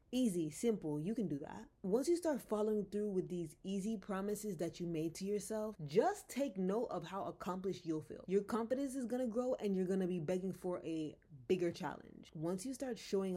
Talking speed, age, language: 205 wpm, 20-39, English